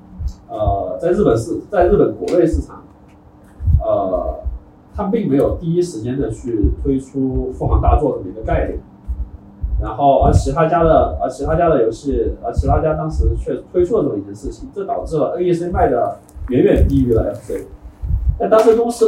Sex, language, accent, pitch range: male, Chinese, native, 125-190 Hz